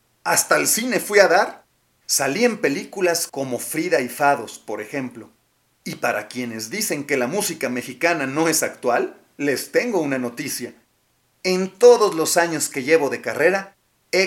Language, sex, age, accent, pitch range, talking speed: Spanish, male, 40-59, Mexican, 125-185 Hz, 165 wpm